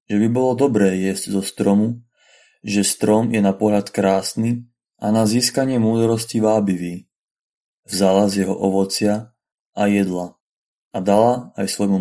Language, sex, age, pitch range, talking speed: Slovak, male, 30-49, 100-115 Hz, 140 wpm